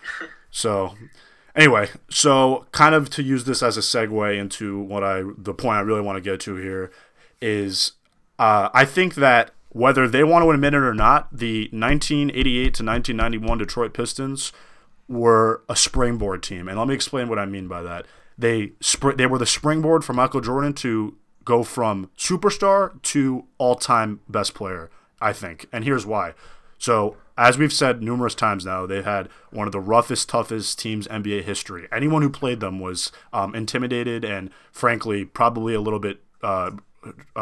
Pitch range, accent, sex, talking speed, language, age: 105-135 Hz, American, male, 170 wpm, English, 20-39